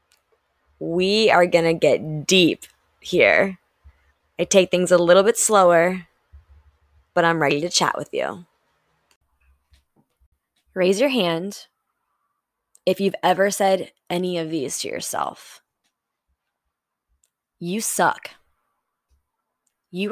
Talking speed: 105 wpm